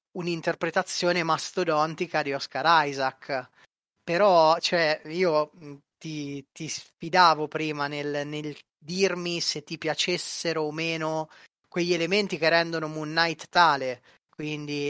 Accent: native